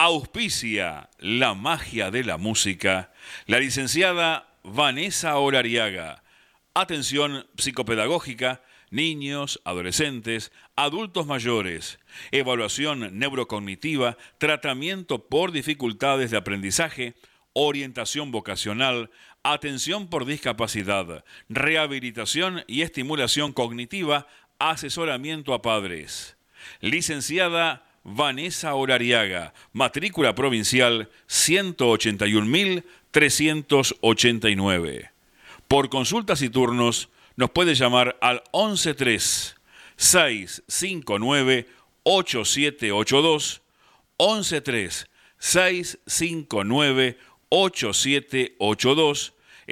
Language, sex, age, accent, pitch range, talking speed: Spanish, male, 50-69, Argentinian, 115-160 Hz, 60 wpm